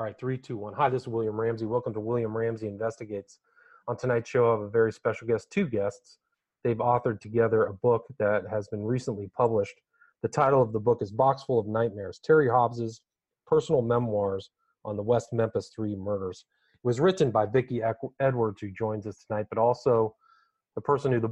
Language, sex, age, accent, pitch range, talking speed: English, male, 40-59, American, 110-135 Hz, 205 wpm